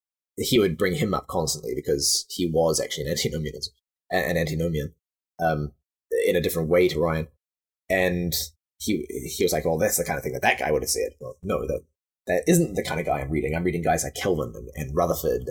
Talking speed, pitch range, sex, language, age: 225 wpm, 75-95 Hz, male, English, 20-39